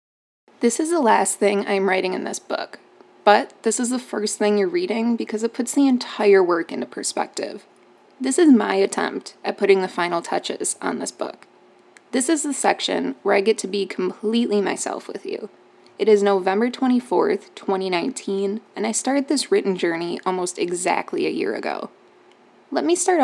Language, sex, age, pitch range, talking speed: English, female, 20-39, 200-265 Hz, 180 wpm